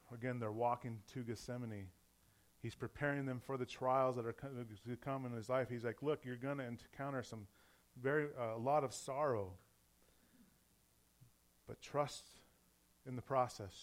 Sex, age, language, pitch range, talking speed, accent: male, 30-49, English, 105-130 Hz, 165 wpm, American